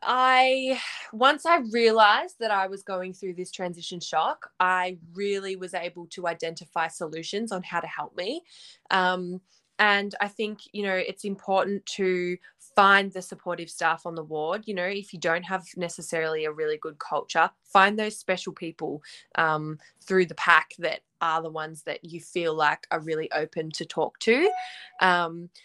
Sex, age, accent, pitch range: female, 20-39, Australian, 170-215 Hz